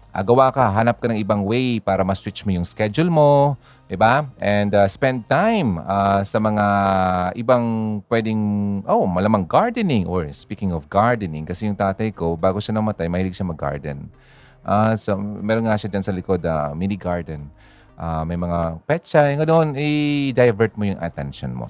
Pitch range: 95-125 Hz